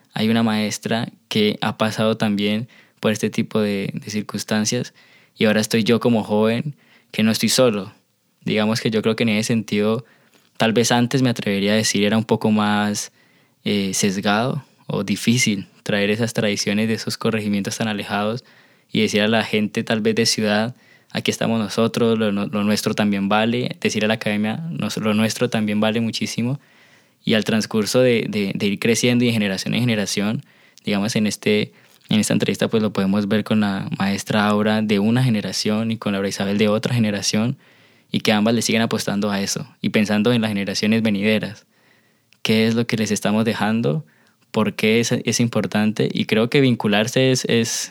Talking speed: 190 wpm